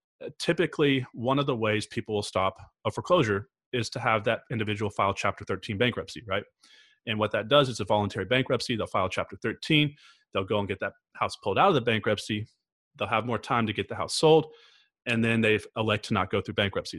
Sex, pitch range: male, 105-130 Hz